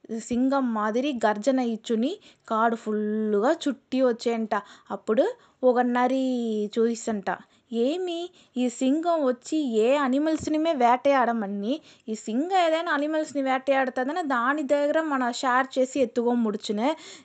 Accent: native